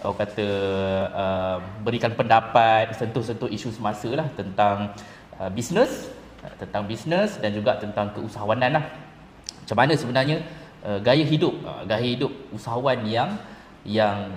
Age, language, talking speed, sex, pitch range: 20-39, Malay, 110 wpm, male, 105-130 Hz